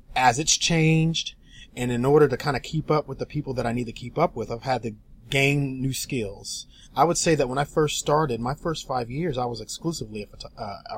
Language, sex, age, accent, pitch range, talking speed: English, male, 30-49, American, 110-135 Hz, 235 wpm